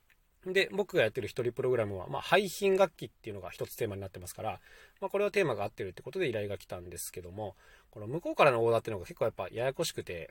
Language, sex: Japanese, male